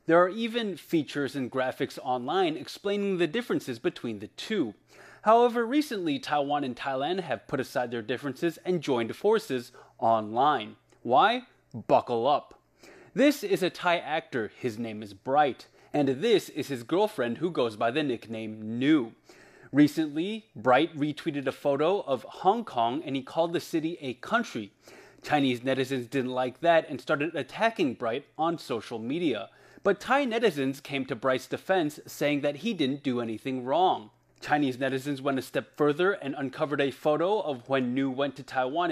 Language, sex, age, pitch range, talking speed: English, male, 20-39, 130-190 Hz, 165 wpm